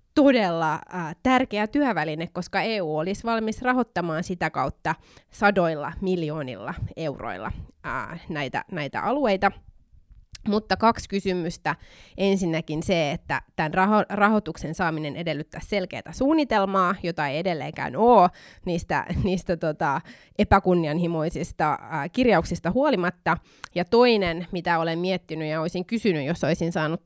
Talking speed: 110 wpm